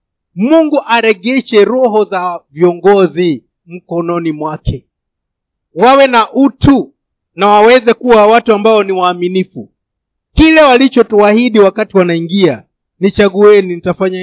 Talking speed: 95 wpm